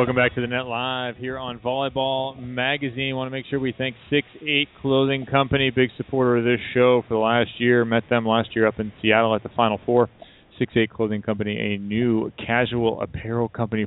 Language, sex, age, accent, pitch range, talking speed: English, male, 30-49, American, 105-120 Hz, 205 wpm